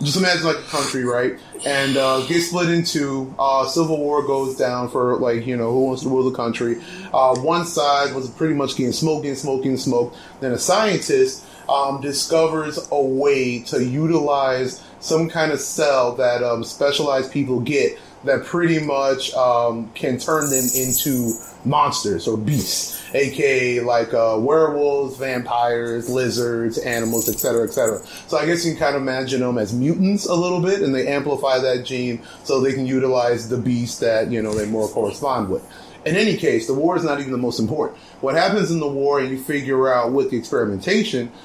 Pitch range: 125-150 Hz